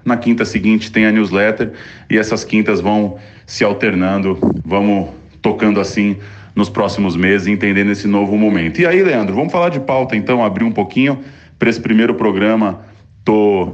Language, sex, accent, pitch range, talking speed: Portuguese, male, Brazilian, 95-110 Hz, 165 wpm